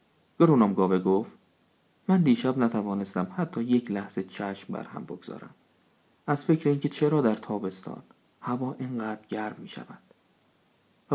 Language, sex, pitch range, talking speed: Persian, male, 105-145 Hz, 125 wpm